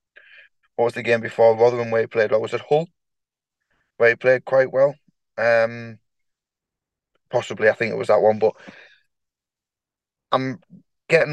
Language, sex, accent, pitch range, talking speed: English, male, British, 115-180 Hz, 155 wpm